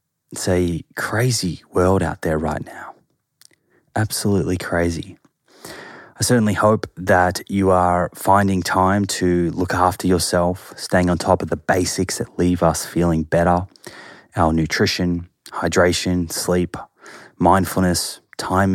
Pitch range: 85-95 Hz